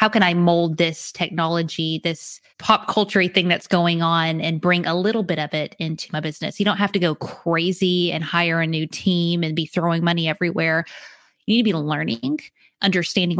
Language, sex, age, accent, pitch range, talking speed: English, female, 20-39, American, 170-210 Hz, 200 wpm